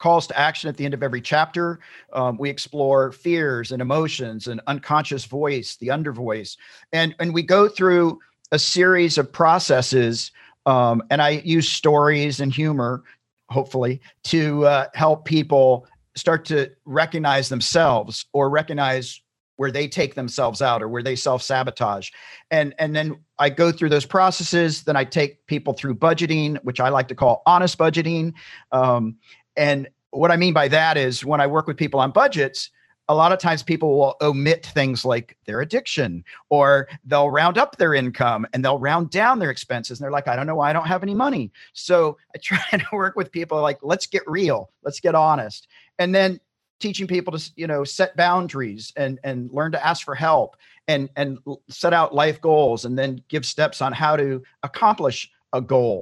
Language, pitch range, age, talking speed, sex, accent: English, 130-165 Hz, 50-69, 185 wpm, male, American